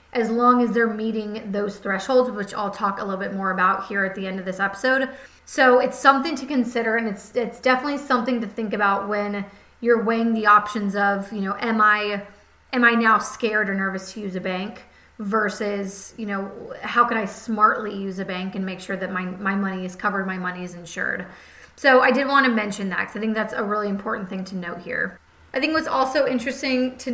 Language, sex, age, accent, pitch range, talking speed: English, female, 30-49, American, 200-235 Hz, 225 wpm